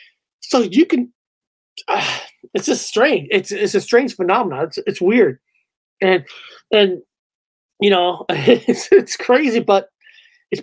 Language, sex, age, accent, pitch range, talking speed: English, male, 30-49, American, 195-245 Hz, 135 wpm